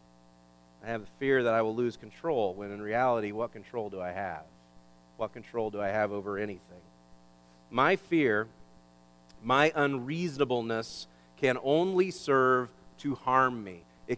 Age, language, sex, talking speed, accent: 40-59, English, male, 150 wpm, American